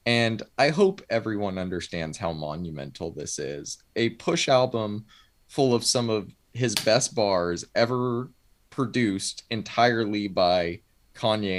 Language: English